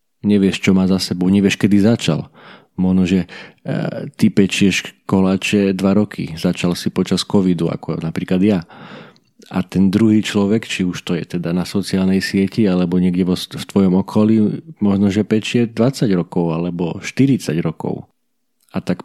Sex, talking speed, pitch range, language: male, 155 wpm, 90-105 Hz, Slovak